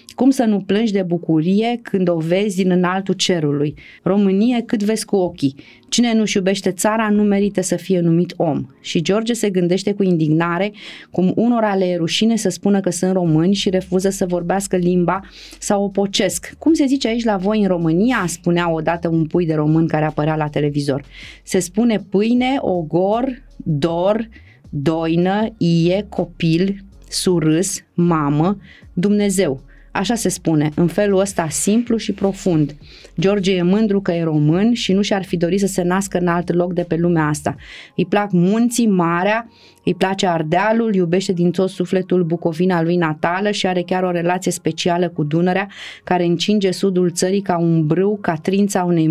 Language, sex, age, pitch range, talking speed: Romanian, female, 30-49, 170-200 Hz, 170 wpm